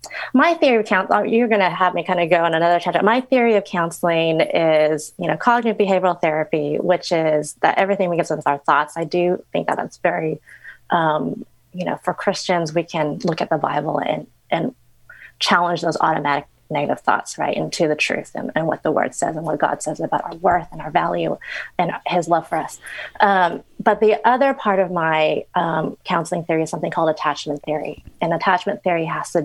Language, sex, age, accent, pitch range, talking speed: English, female, 30-49, American, 160-195 Hz, 210 wpm